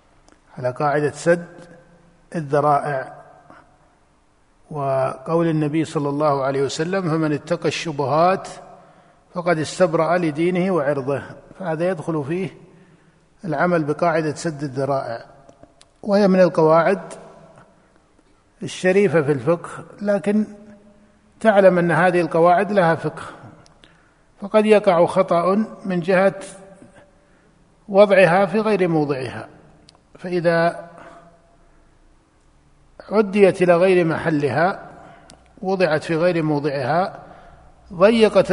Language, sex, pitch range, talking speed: Arabic, male, 155-185 Hz, 85 wpm